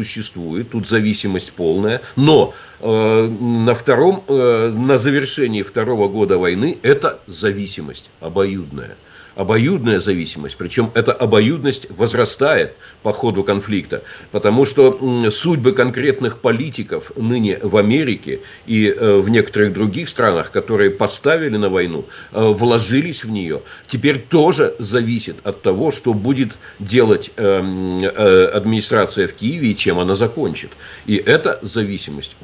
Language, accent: Russian, native